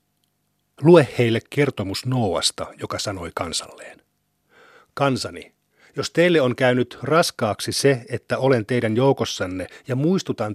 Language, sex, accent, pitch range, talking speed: Finnish, male, native, 110-135 Hz, 115 wpm